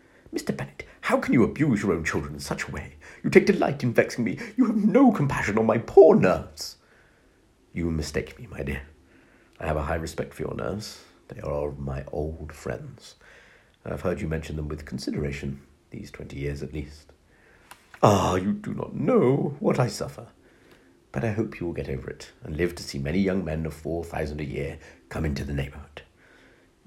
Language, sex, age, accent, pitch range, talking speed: English, male, 50-69, British, 70-85 Hz, 205 wpm